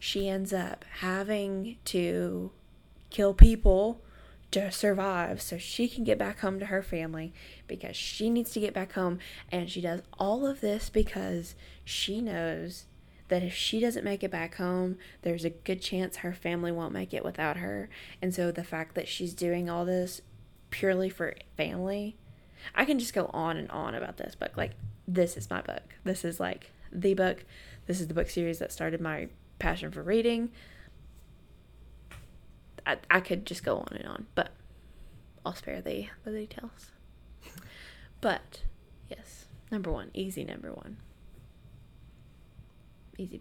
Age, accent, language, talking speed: 20-39, American, English, 165 wpm